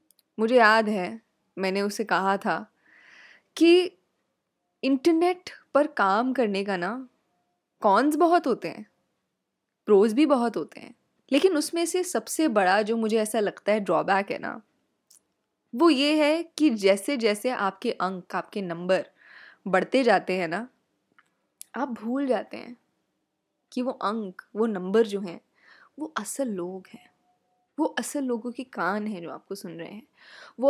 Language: Hindi